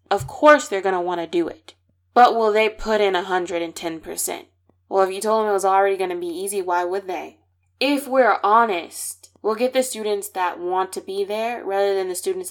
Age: 20-39